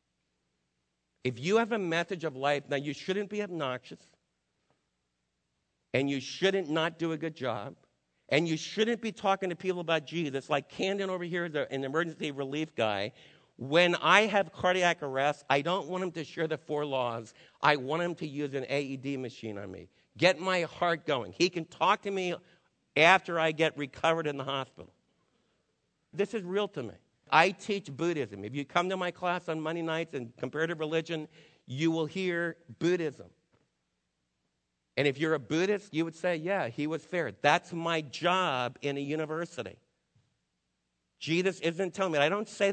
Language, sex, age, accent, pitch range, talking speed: English, male, 50-69, American, 140-180 Hz, 175 wpm